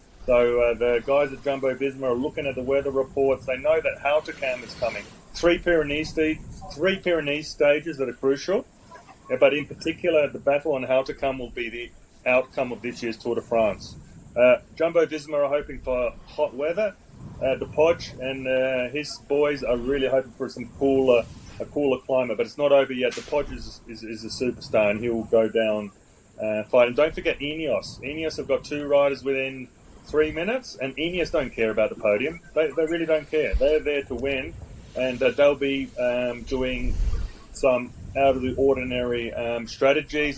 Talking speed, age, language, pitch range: 195 wpm, 30-49, English, 120-145 Hz